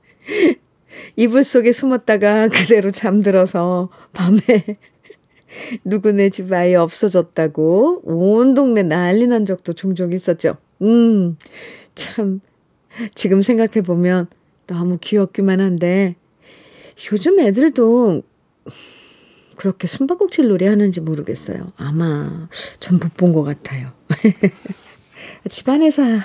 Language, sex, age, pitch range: Korean, female, 40-59, 180-265 Hz